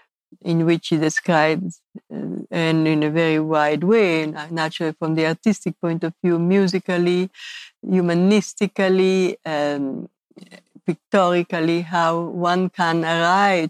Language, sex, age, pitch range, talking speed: English, female, 60-79, 175-220 Hz, 110 wpm